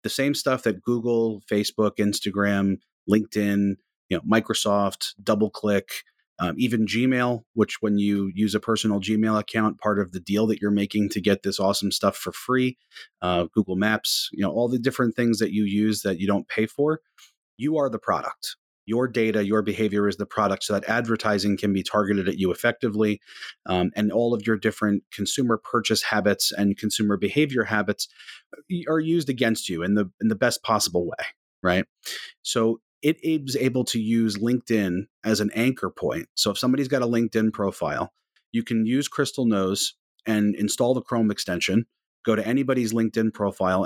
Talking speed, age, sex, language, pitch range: 180 wpm, 30-49, male, English, 100-120 Hz